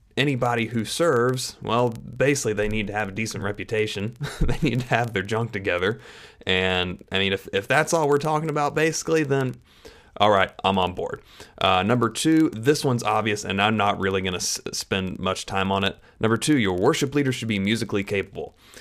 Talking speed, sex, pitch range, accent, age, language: 200 wpm, male, 95-120 Hz, American, 30-49, English